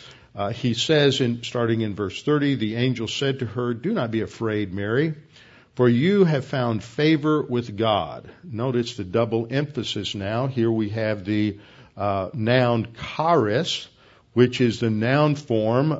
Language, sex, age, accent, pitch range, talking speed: English, male, 50-69, American, 105-125 Hz, 155 wpm